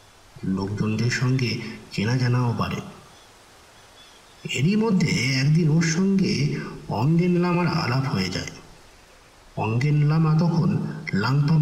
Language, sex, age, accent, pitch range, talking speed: Bengali, male, 50-69, native, 135-165 Hz, 100 wpm